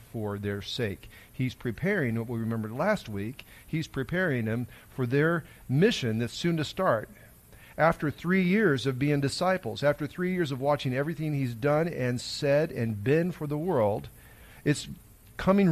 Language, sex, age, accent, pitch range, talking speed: English, male, 40-59, American, 115-185 Hz, 165 wpm